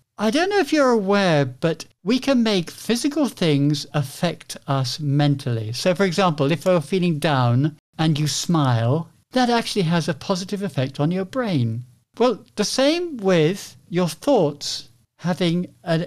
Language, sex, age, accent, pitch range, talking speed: English, male, 60-79, British, 130-185 Hz, 155 wpm